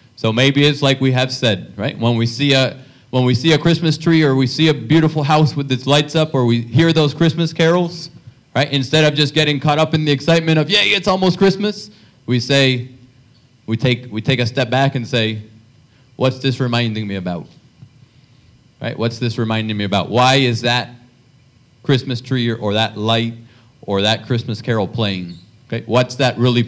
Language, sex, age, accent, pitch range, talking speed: English, male, 30-49, American, 115-140 Hz, 200 wpm